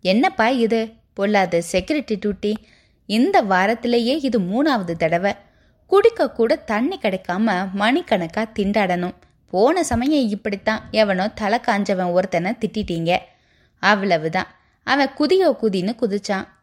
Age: 20-39